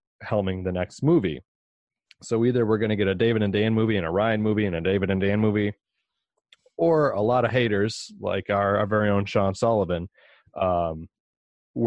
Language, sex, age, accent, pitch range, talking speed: English, male, 30-49, American, 95-115 Hz, 195 wpm